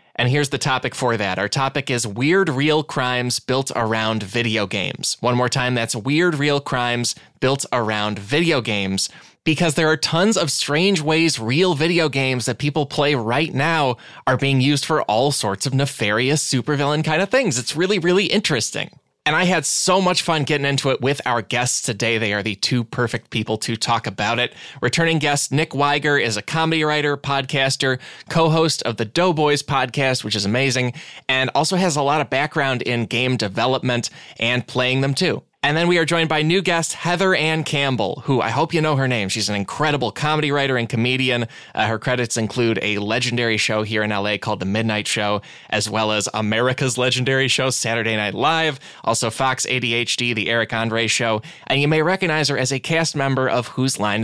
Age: 20-39